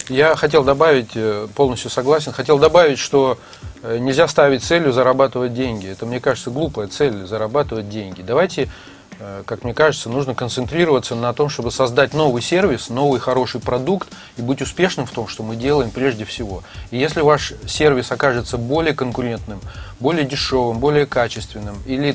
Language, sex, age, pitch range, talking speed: Russian, male, 30-49, 115-145 Hz, 155 wpm